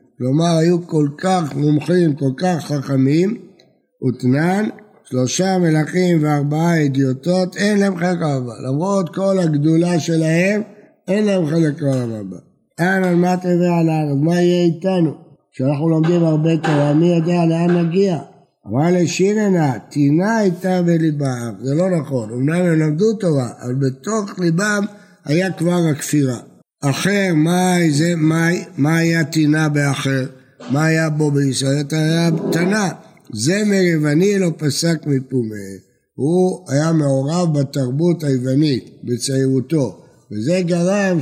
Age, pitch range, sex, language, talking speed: 60-79, 140-175 Hz, male, Hebrew, 125 wpm